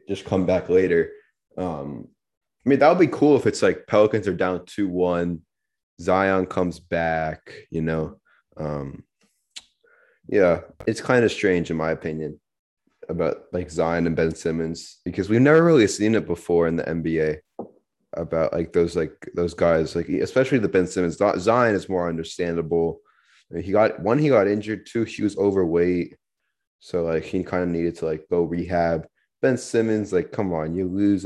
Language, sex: English, male